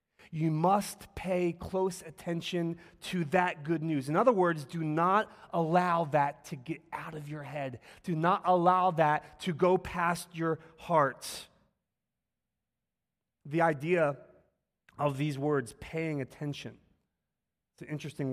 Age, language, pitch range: 30-49, English, 135-175 Hz